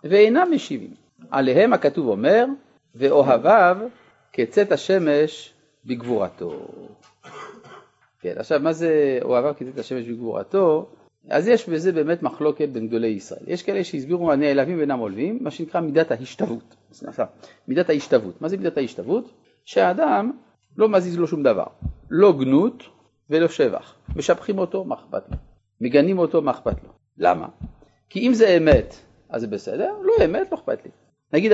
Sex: male